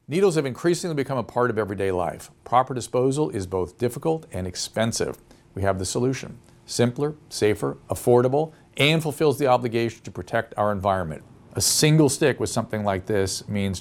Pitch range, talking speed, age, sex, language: 100-125 Hz, 170 wpm, 50-69, male, English